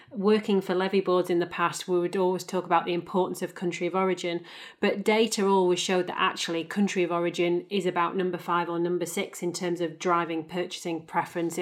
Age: 30-49